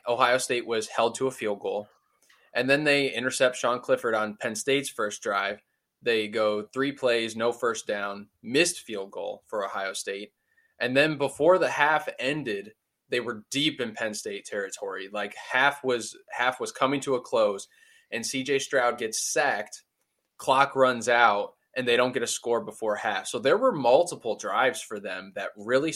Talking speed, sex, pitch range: 185 wpm, male, 110-145 Hz